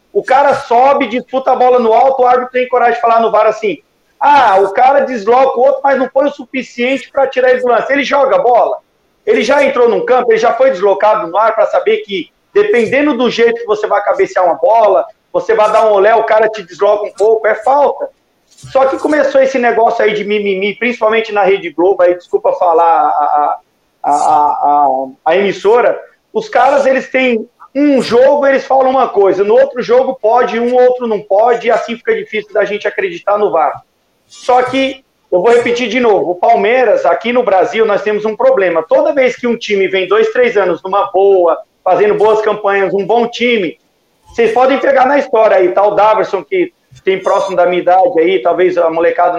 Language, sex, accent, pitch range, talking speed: Portuguese, male, Brazilian, 200-270 Hz, 210 wpm